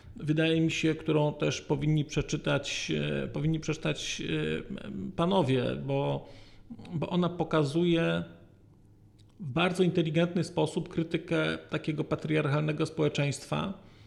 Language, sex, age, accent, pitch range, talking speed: Polish, male, 40-59, native, 140-175 Hz, 90 wpm